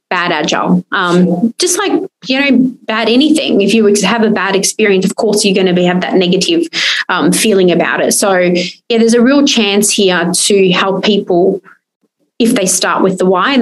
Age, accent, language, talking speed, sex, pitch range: 20-39, Australian, English, 195 wpm, female, 185-230 Hz